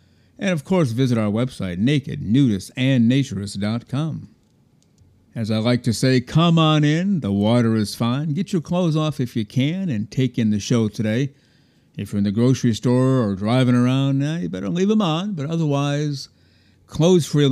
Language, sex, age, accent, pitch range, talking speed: English, male, 50-69, American, 105-140 Hz, 170 wpm